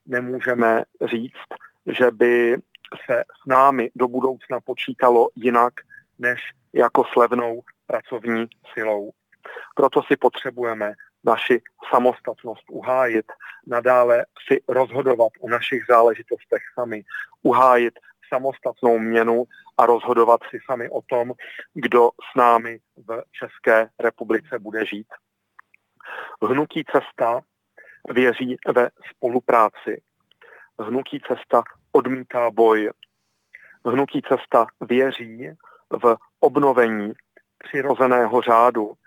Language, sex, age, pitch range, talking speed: Czech, male, 40-59, 115-130 Hz, 95 wpm